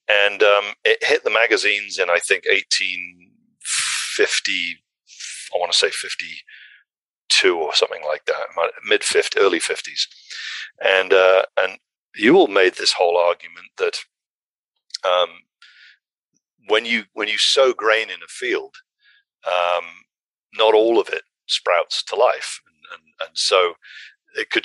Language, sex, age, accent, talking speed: English, male, 40-59, British, 135 wpm